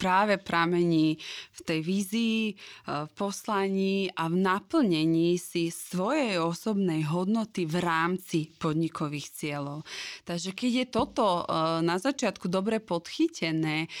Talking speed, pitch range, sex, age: 110 wpm, 165-210 Hz, female, 20-39